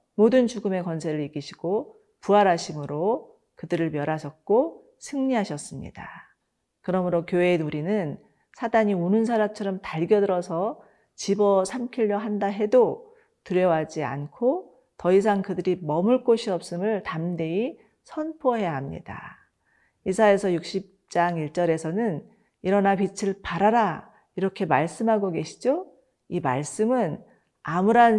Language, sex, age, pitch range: Korean, female, 40-59, 165-220 Hz